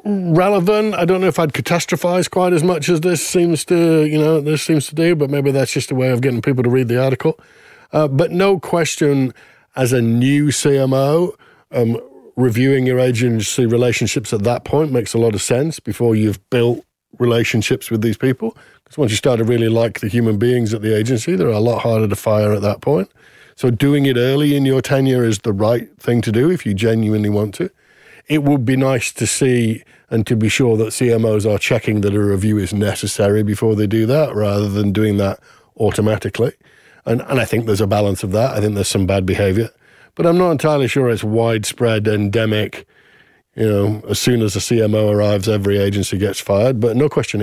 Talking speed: 205 wpm